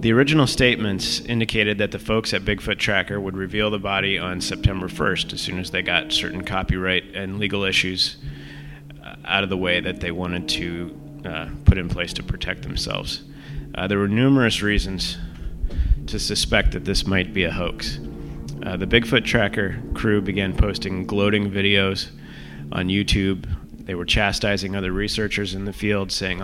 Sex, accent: male, American